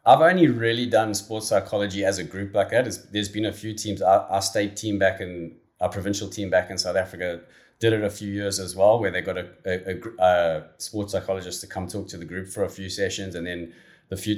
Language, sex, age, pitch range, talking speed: English, male, 20-39, 95-115 Hz, 250 wpm